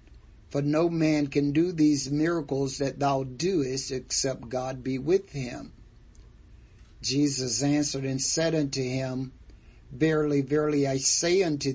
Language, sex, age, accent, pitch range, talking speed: English, male, 50-69, American, 130-155 Hz, 135 wpm